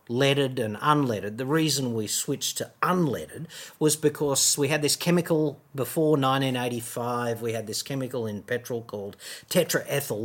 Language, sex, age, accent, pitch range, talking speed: English, male, 50-69, Australian, 120-155 Hz, 145 wpm